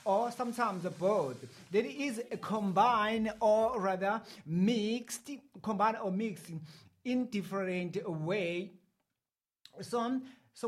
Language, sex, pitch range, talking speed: English, male, 200-250 Hz, 100 wpm